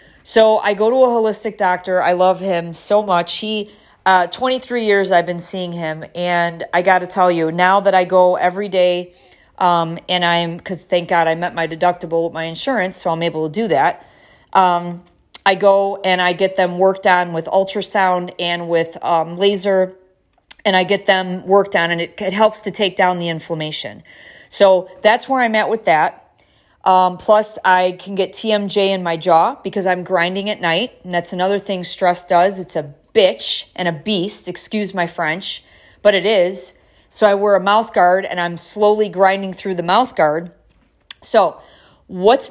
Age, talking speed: 40-59, 190 wpm